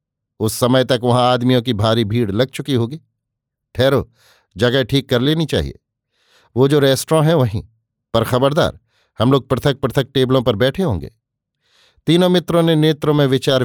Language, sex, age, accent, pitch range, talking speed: Hindi, male, 50-69, native, 115-140 Hz, 165 wpm